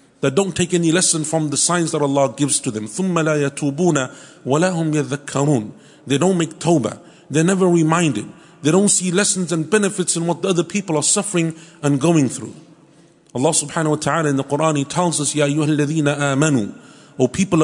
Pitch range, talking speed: 145-180 Hz, 180 wpm